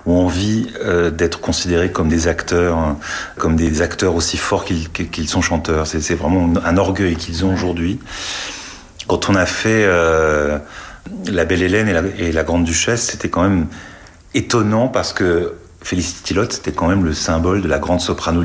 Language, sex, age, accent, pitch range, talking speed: French, male, 40-59, French, 80-95 Hz, 180 wpm